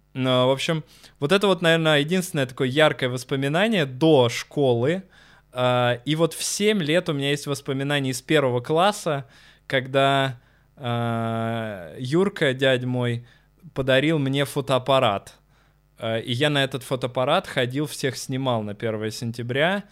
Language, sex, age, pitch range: Russian, male, 20-39, 120-155 Hz